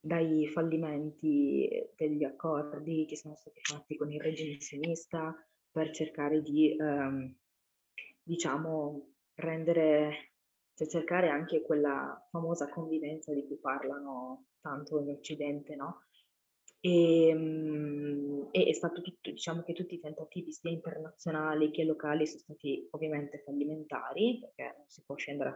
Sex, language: female, Italian